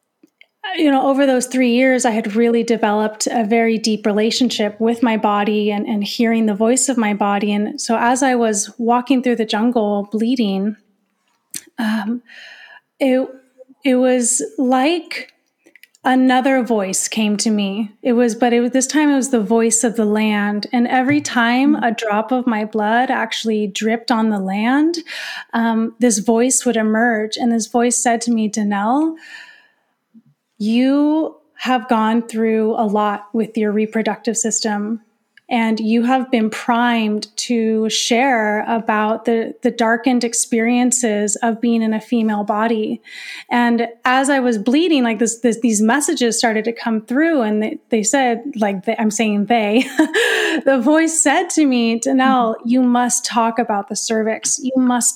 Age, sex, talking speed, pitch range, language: 30-49, female, 160 wpm, 220-255 Hz, English